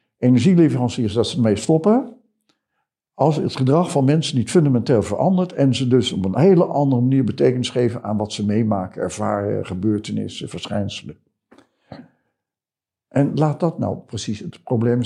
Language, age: Dutch, 60-79